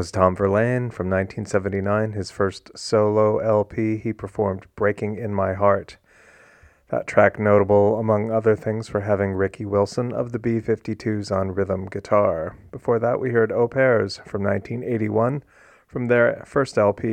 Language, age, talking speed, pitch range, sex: English, 30-49, 145 wpm, 100-120 Hz, male